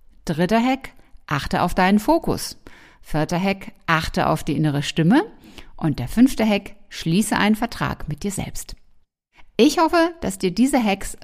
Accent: German